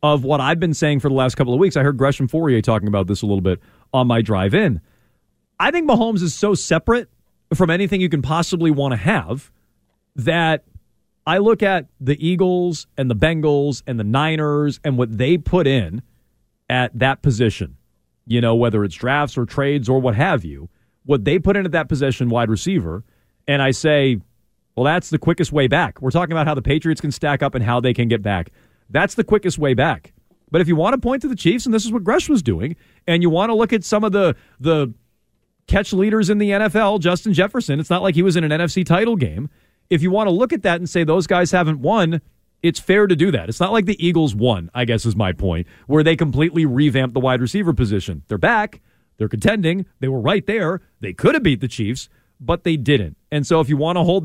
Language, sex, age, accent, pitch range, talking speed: English, male, 40-59, American, 125-175 Hz, 235 wpm